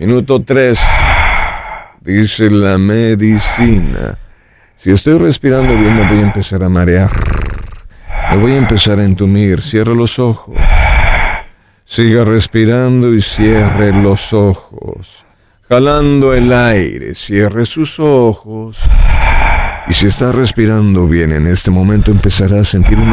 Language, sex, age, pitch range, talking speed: Spanish, male, 50-69, 95-115 Hz, 125 wpm